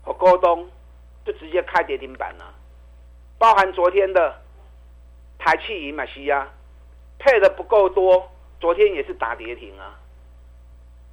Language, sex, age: Chinese, male, 50-69